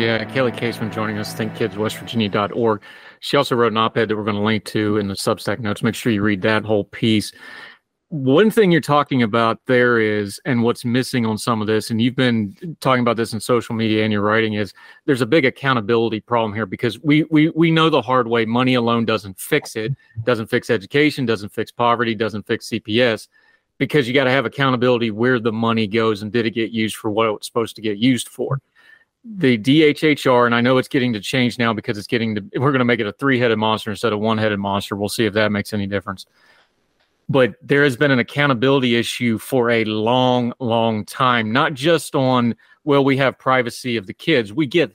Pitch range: 110-130 Hz